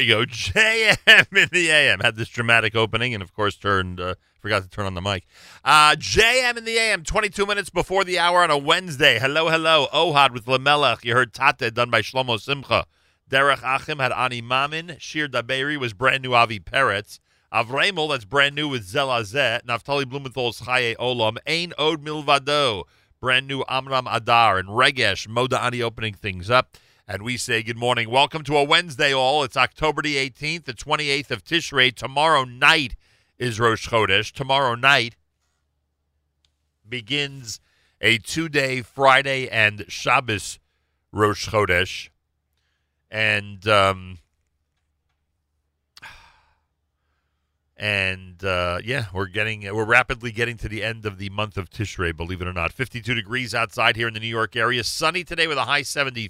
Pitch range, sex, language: 100-140 Hz, male, English